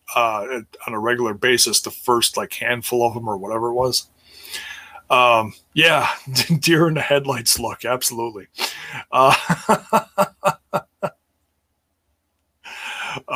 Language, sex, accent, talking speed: English, male, American, 110 wpm